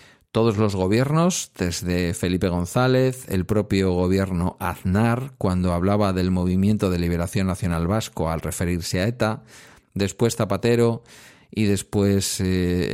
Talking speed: 125 wpm